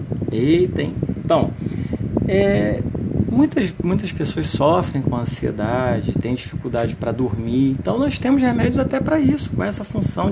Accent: Brazilian